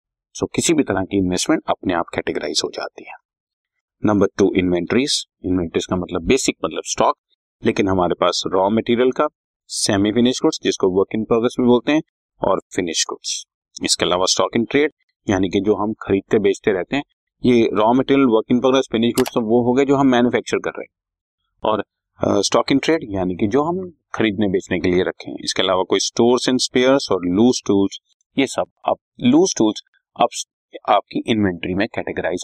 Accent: native